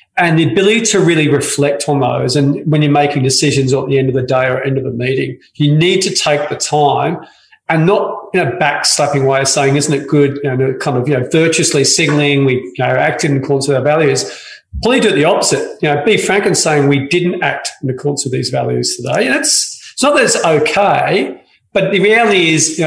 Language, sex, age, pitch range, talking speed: English, male, 40-59, 135-165 Hz, 240 wpm